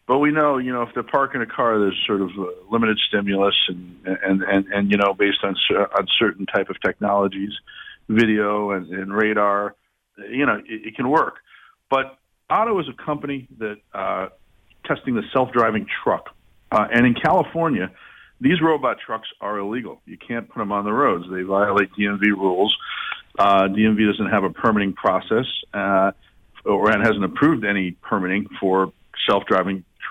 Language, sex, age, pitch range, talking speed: English, male, 50-69, 95-115 Hz, 170 wpm